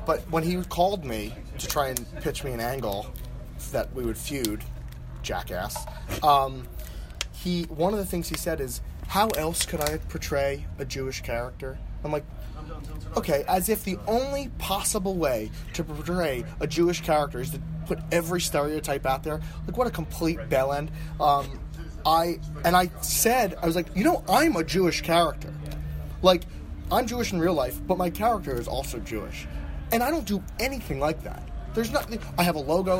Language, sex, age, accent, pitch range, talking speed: English, male, 30-49, American, 105-170 Hz, 180 wpm